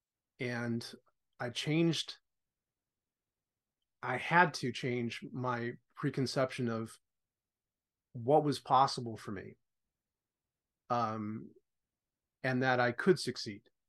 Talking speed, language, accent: 90 wpm, English, American